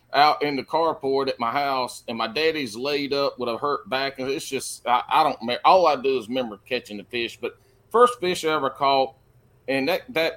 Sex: male